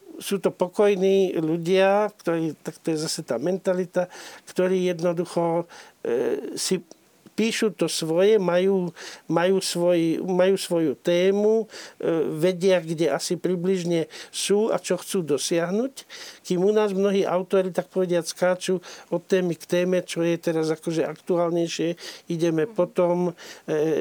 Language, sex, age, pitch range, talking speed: Slovak, male, 50-69, 165-190 Hz, 135 wpm